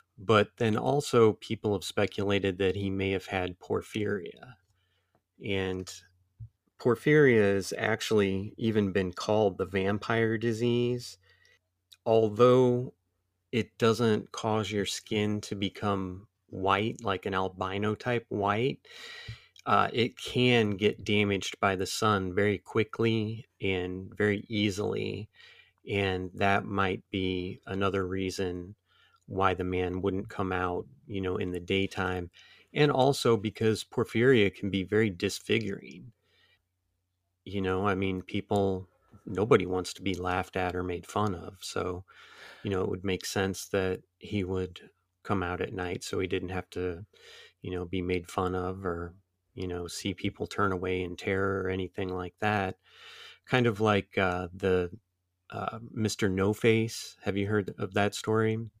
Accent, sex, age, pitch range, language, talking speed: American, male, 30-49, 90-105 Hz, English, 145 wpm